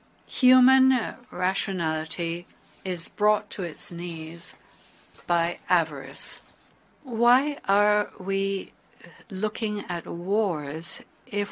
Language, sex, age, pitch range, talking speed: English, female, 60-79, 170-210 Hz, 85 wpm